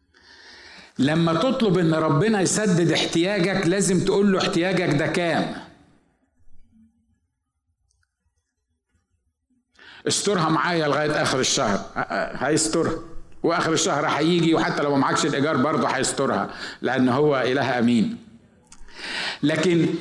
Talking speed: 100 wpm